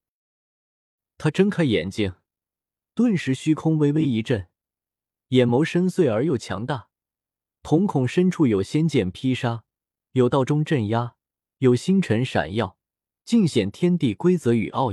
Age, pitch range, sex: 20-39, 105-155 Hz, male